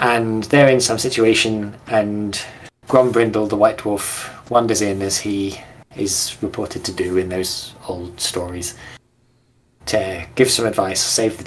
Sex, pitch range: male, 110-125 Hz